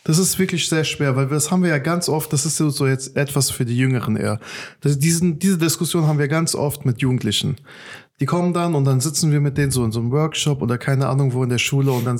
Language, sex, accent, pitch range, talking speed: German, male, German, 135-170 Hz, 255 wpm